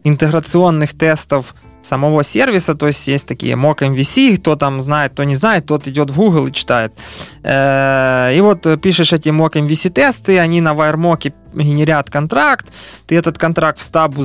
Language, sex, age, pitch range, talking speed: Ukrainian, male, 20-39, 140-175 Hz, 165 wpm